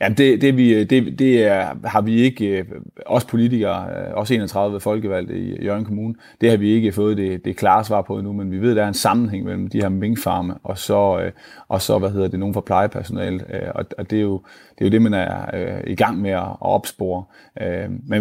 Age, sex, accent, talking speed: 30-49, male, native, 220 wpm